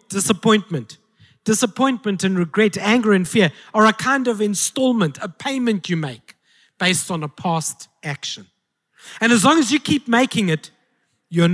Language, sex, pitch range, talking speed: English, male, 155-205 Hz, 155 wpm